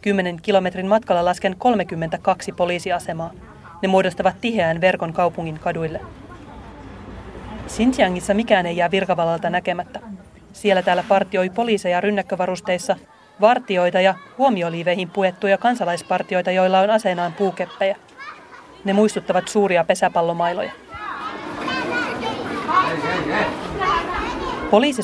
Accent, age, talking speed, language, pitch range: native, 30-49, 90 wpm, Finnish, 175-205 Hz